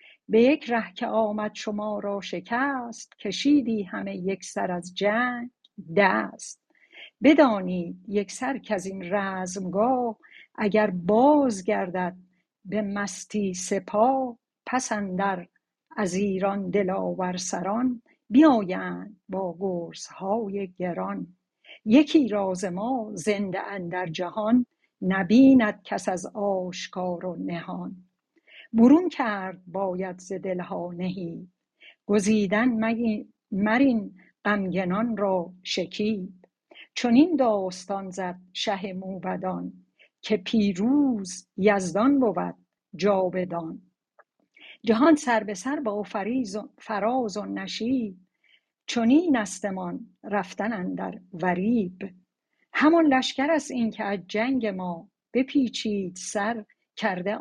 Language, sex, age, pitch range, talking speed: Persian, female, 60-79, 185-235 Hz, 100 wpm